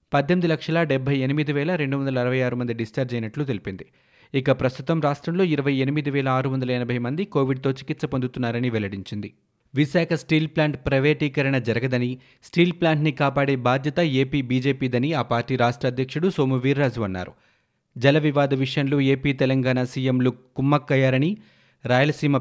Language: Telugu